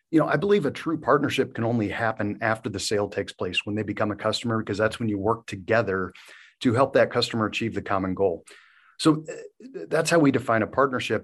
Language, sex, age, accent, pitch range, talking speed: English, male, 40-59, American, 105-130 Hz, 220 wpm